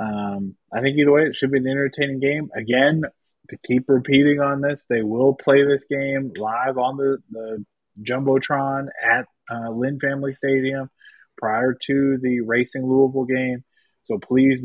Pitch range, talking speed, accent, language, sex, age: 120-145 Hz, 165 wpm, American, English, male, 30-49